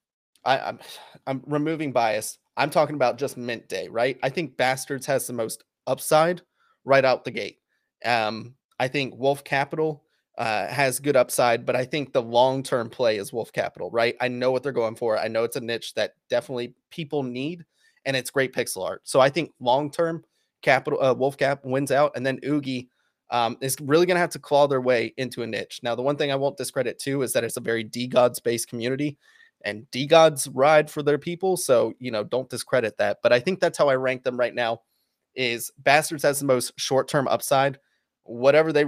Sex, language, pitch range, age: male, English, 125-145 Hz, 20-39